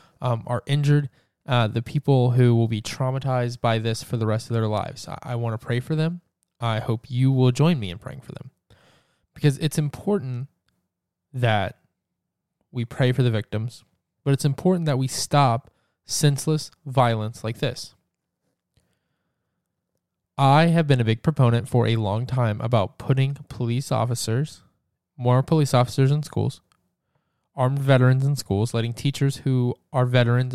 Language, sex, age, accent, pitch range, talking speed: English, male, 20-39, American, 115-140 Hz, 160 wpm